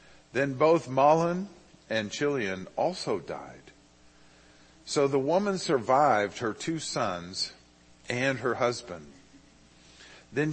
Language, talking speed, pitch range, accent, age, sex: English, 105 wpm, 90-135 Hz, American, 50-69, male